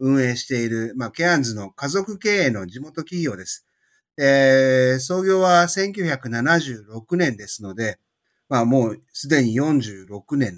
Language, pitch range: Japanese, 110-155 Hz